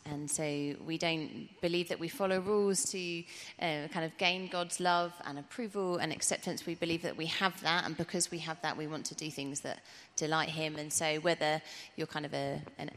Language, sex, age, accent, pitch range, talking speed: English, female, 30-49, British, 155-190 Hz, 215 wpm